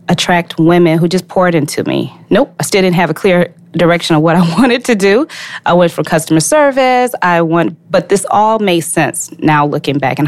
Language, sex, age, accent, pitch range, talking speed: English, female, 20-39, American, 155-190 Hz, 215 wpm